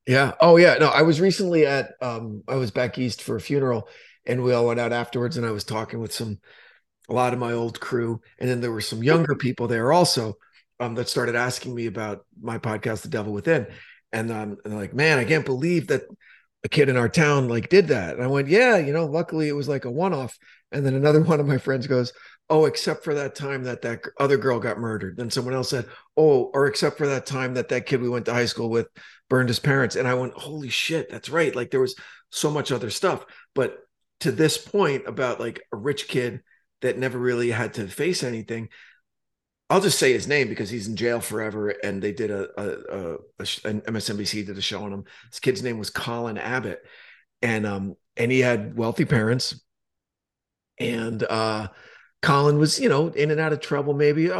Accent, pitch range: American, 115-145 Hz